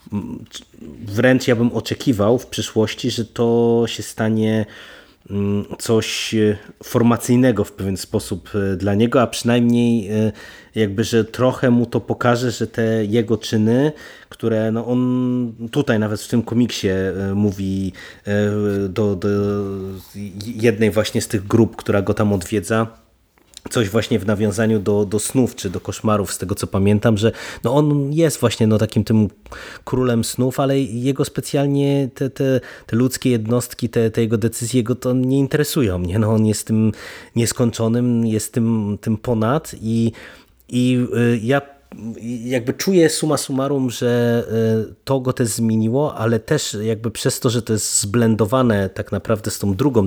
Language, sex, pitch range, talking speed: Polish, male, 105-125 Hz, 150 wpm